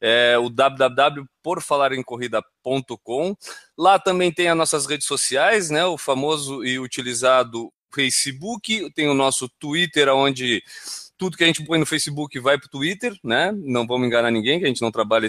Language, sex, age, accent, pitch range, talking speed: Portuguese, male, 20-39, Brazilian, 130-185 Hz, 165 wpm